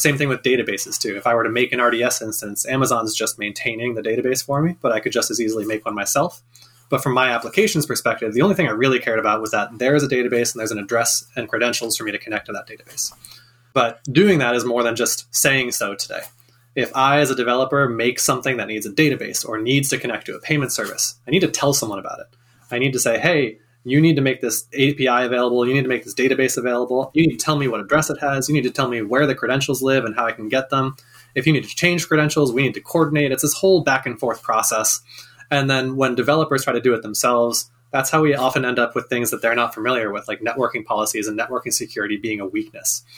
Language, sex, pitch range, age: English, male, 115-140 Hz, 20-39